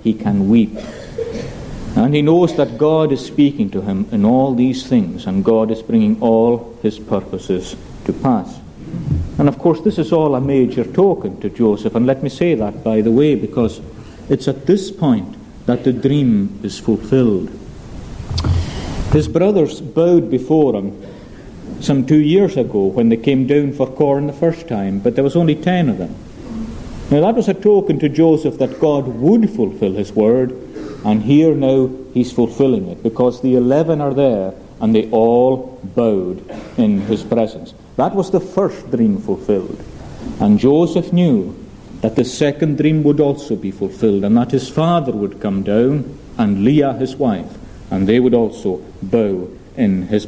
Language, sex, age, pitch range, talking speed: English, male, 60-79, 110-160 Hz, 175 wpm